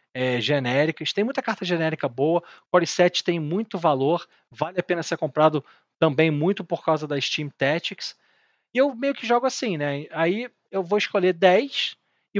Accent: Brazilian